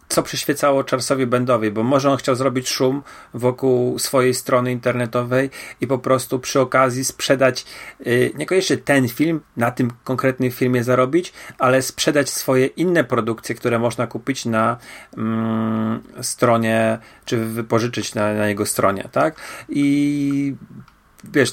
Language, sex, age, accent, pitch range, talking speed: Polish, male, 30-49, native, 115-145 Hz, 135 wpm